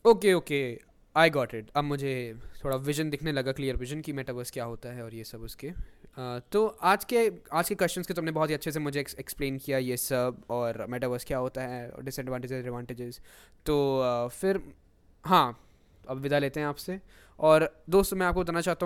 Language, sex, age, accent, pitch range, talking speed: Hindi, male, 20-39, native, 120-150 Hz, 195 wpm